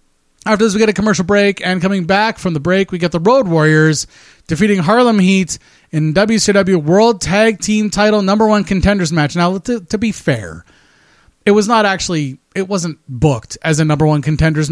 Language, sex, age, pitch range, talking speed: English, male, 30-49, 150-210 Hz, 195 wpm